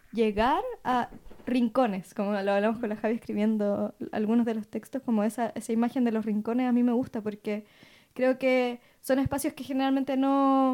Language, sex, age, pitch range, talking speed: Spanish, female, 10-29, 220-260 Hz, 185 wpm